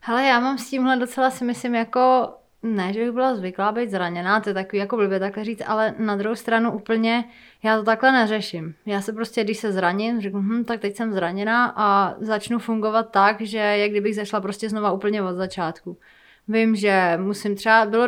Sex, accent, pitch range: female, native, 195-225 Hz